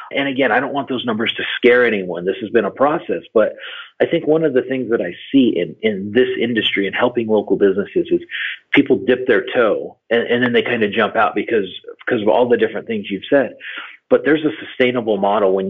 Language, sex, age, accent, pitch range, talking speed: English, male, 40-59, American, 105-160 Hz, 235 wpm